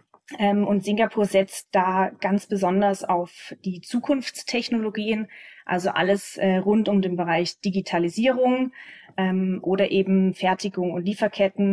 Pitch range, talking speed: 190-225 Hz, 125 wpm